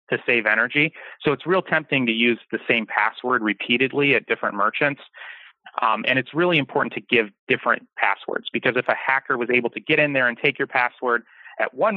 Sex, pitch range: male, 110-140 Hz